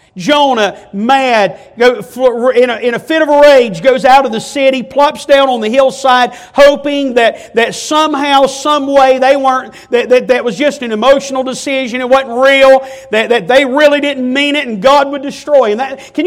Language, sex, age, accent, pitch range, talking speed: English, male, 50-69, American, 225-285 Hz, 190 wpm